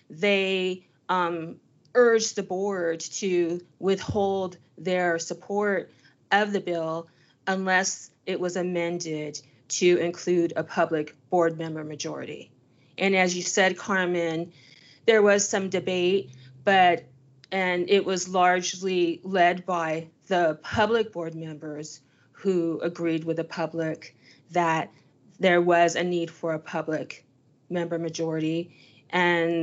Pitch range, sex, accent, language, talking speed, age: 160-180 Hz, female, American, English, 120 wpm, 30-49